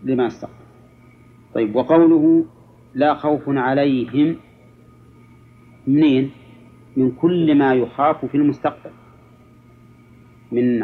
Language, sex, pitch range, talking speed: Arabic, male, 120-140 Hz, 85 wpm